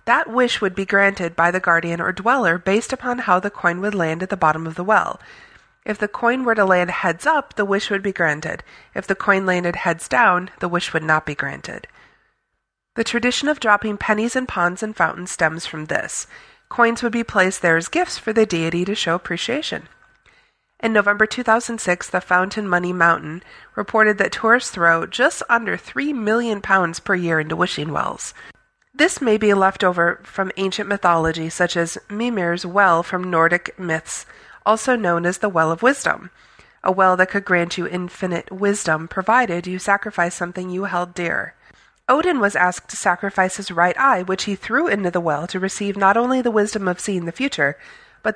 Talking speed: 195 wpm